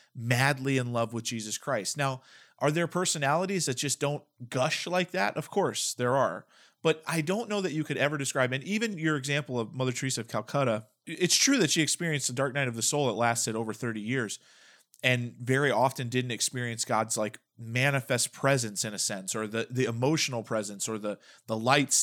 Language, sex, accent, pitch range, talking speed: English, male, American, 115-145 Hz, 205 wpm